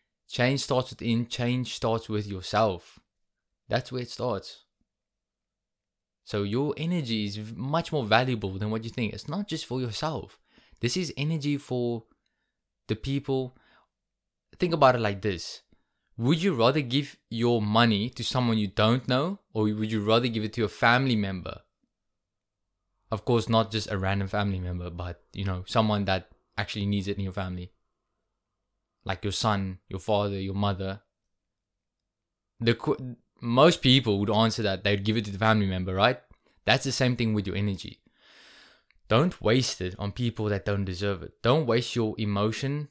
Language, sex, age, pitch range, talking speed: English, male, 20-39, 100-125 Hz, 165 wpm